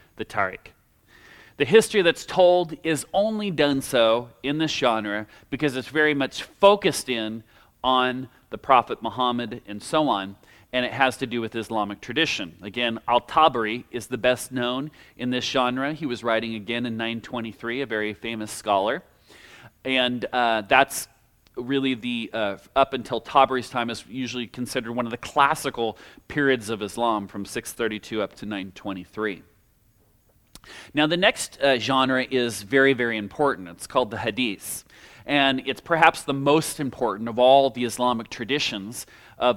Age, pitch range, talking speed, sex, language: 40-59, 115-145 Hz, 160 wpm, male, English